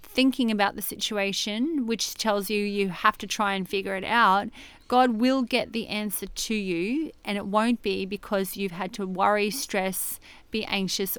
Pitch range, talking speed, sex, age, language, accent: 195-225 Hz, 180 wpm, female, 30-49, English, Australian